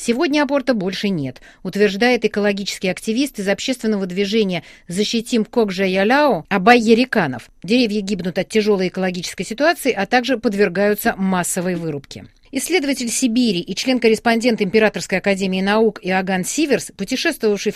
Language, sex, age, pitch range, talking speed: Russian, female, 40-59, 200-245 Hz, 110 wpm